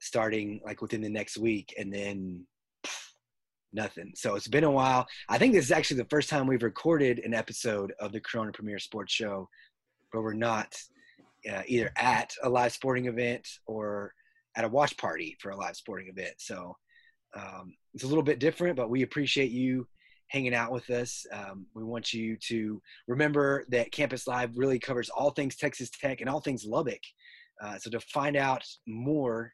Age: 20-39